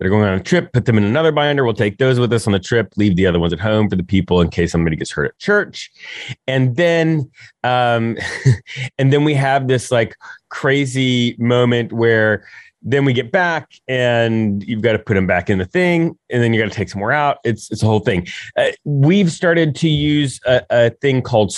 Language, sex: English, male